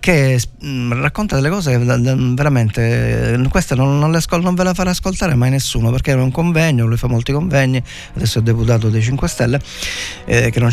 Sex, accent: male, native